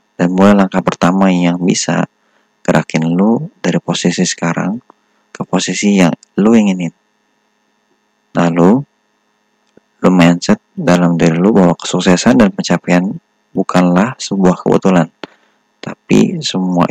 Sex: male